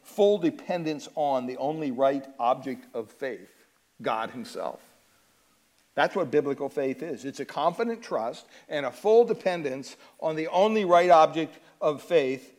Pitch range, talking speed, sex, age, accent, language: 140-185 Hz, 150 wpm, male, 50-69, American, English